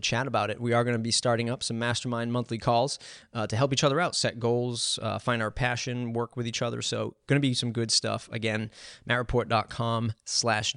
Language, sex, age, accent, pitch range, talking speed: English, male, 30-49, American, 115-140 Hz, 215 wpm